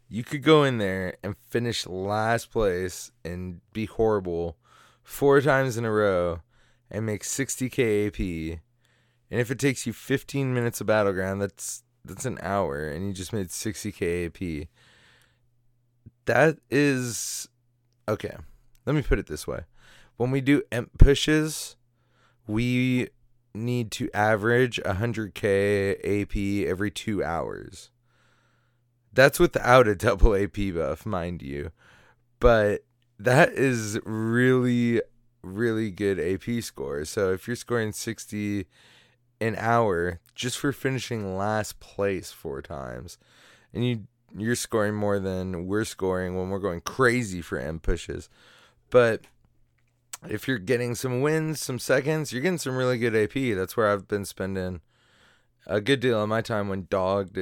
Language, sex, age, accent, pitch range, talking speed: English, male, 20-39, American, 100-120 Hz, 140 wpm